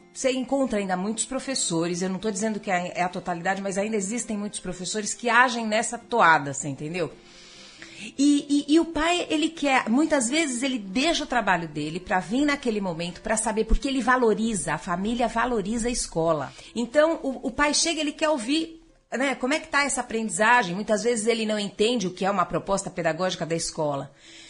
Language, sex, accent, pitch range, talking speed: Portuguese, female, Brazilian, 200-280 Hz, 195 wpm